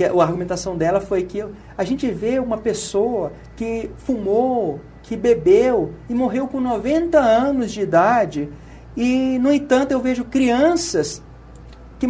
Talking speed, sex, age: 140 wpm, male, 40-59